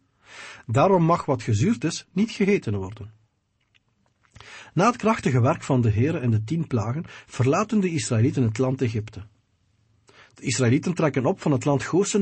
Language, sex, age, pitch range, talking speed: English, male, 50-69, 110-160 Hz, 160 wpm